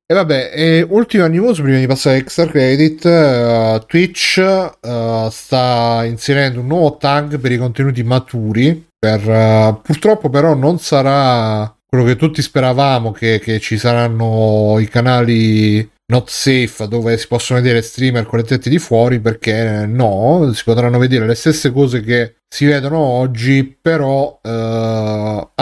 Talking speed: 150 wpm